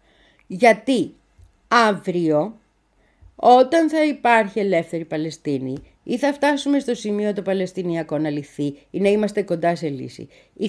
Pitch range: 170-270 Hz